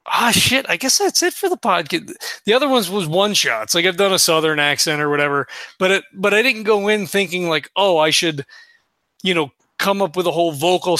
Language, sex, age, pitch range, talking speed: English, male, 30-49, 155-195 Hz, 235 wpm